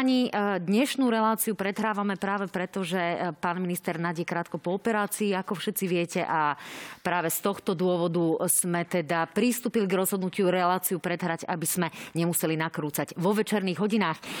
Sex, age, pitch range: female, 30-49, 170-215 Hz